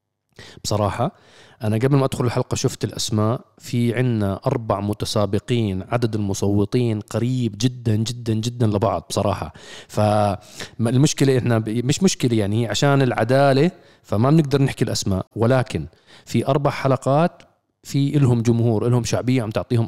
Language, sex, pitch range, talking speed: Arabic, male, 110-135 Hz, 125 wpm